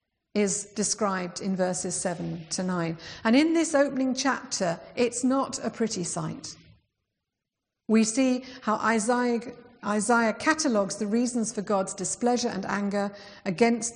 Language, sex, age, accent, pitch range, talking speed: English, female, 50-69, British, 180-230 Hz, 130 wpm